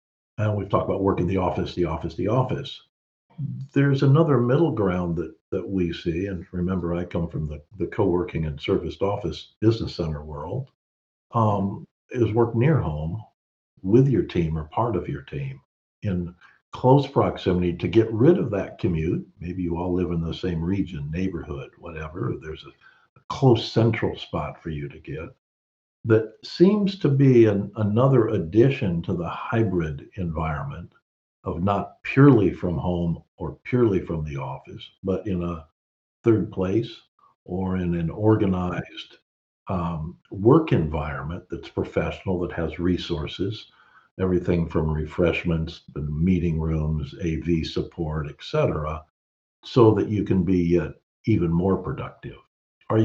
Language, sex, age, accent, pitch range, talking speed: English, male, 60-79, American, 80-110 Hz, 150 wpm